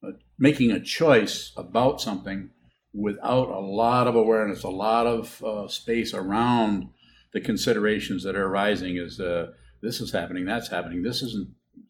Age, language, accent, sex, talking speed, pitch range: 50-69, English, American, male, 150 wpm, 85-110 Hz